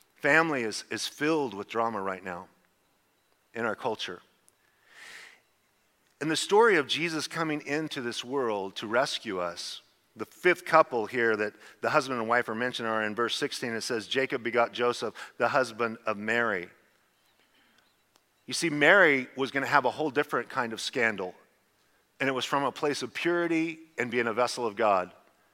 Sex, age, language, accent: male, 40-59, English, American